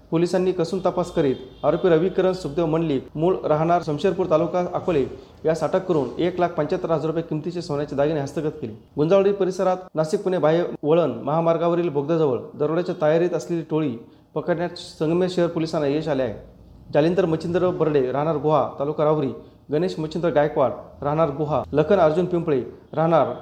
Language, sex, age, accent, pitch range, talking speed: Marathi, male, 30-49, native, 155-180 Hz, 145 wpm